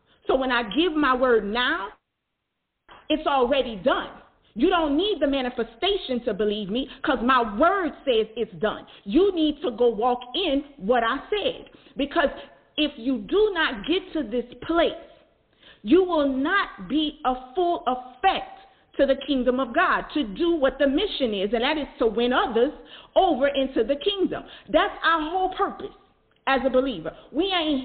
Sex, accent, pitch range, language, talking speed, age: female, American, 245-340 Hz, English, 170 wpm, 40-59